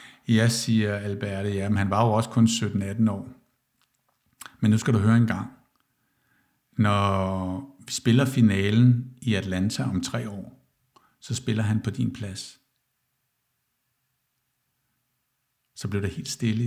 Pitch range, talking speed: 105-125 Hz, 135 wpm